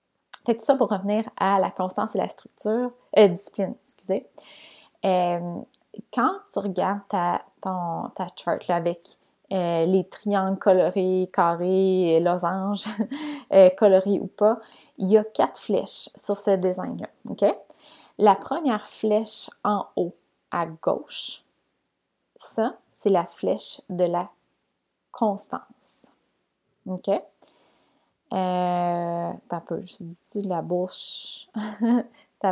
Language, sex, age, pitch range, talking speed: French, female, 20-39, 185-220 Hz, 120 wpm